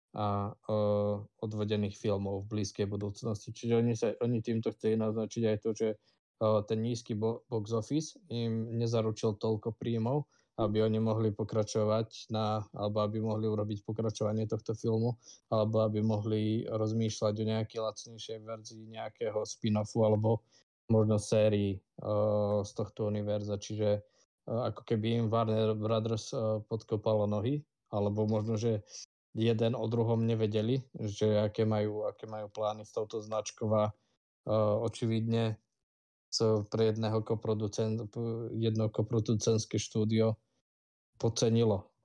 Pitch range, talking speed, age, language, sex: 105-115 Hz, 125 wpm, 20-39, Slovak, male